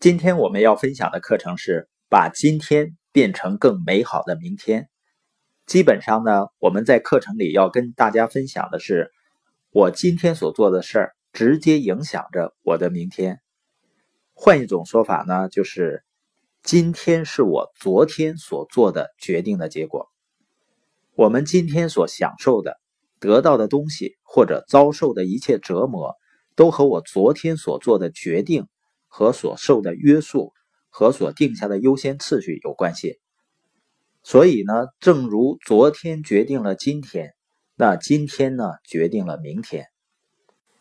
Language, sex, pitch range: Chinese, male, 115-170 Hz